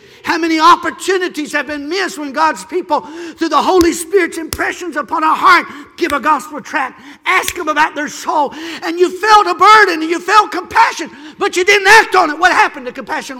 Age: 50-69